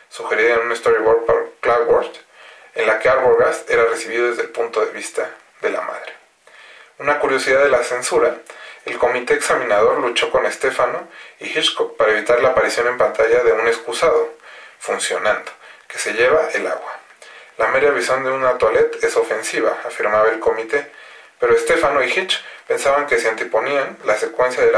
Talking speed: 170 wpm